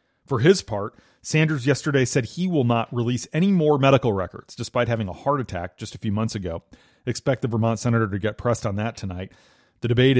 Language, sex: English, male